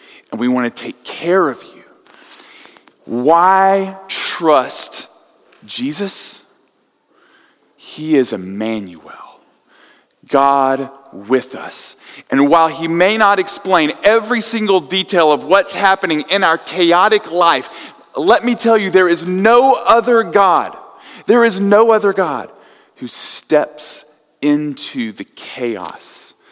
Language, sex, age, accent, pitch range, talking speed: English, male, 40-59, American, 155-220 Hz, 120 wpm